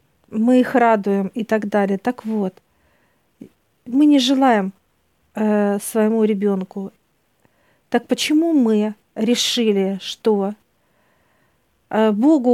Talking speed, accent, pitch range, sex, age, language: 100 wpm, native, 205-255 Hz, female, 50-69, Russian